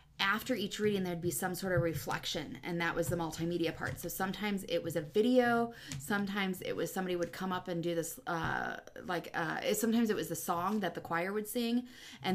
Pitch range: 165-190 Hz